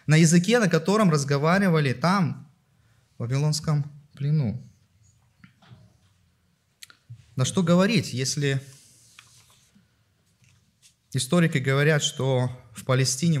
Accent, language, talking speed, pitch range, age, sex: native, Russian, 80 wpm, 120-175 Hz, 20-39, male